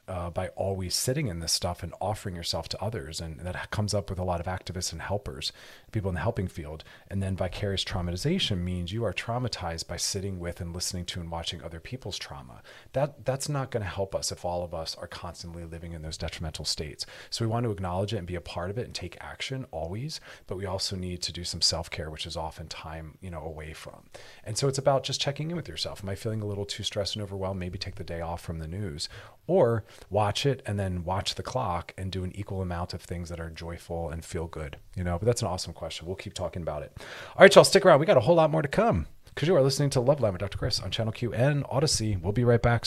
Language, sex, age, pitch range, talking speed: English, male, 40-59, 85-110 Hz, 265 wpm